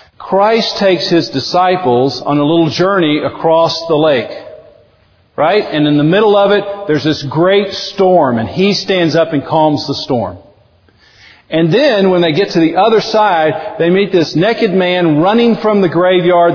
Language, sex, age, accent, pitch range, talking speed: English, male, 50-69, American, 110-180 Hz, 175 wpm